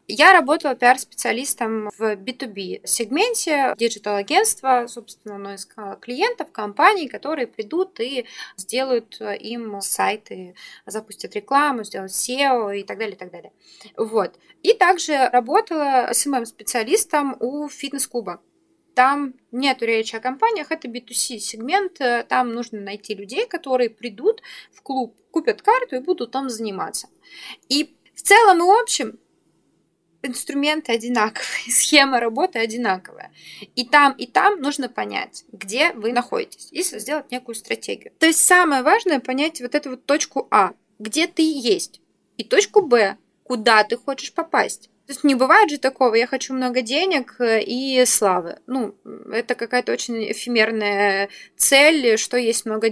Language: Russian